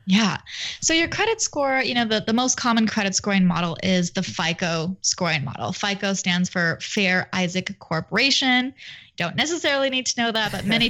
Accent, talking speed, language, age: American, 180 wpm, English, 20-39